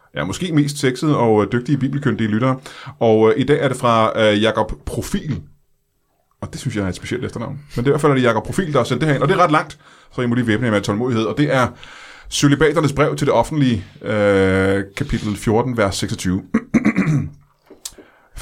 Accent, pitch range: native, 105-140 Hz